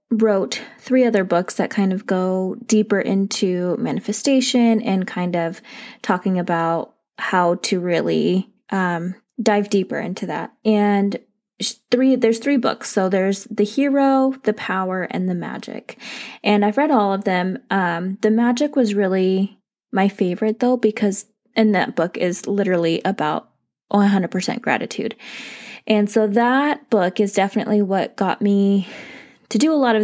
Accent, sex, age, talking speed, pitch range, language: American, female, 20-39, 150 wpm, 185-225 Hz, English